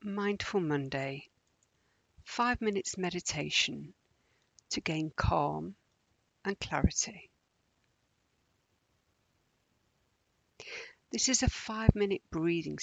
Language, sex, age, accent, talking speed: English, female, 50-69, British, 75 wpm